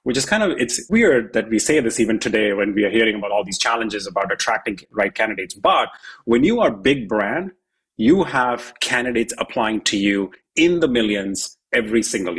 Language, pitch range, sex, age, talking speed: English, 110-135 Hz, male, 30-49, 200 wpm